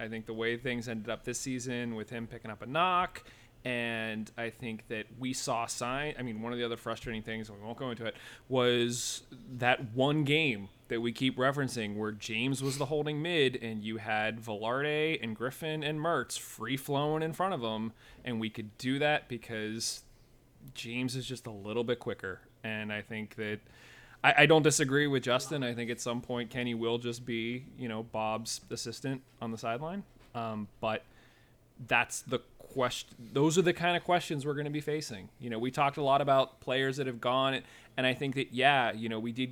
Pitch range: 115-135 Hz